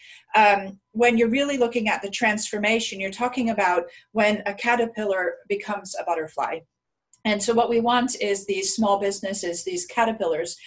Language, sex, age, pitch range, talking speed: English, female, 40-59, 195-230 Hz, 155 wpm